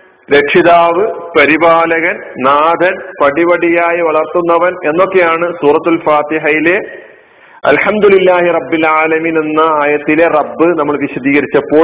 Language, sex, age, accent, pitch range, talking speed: Malayalam, male, 50-69, native, 155-225 Hz, 70 wpm